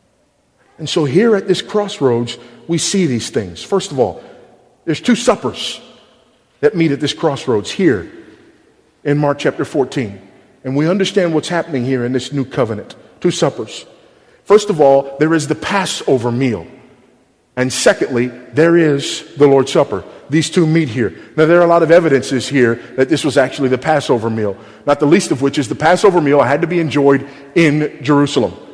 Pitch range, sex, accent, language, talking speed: 130-170 Hz, male, American, English, 180 wpm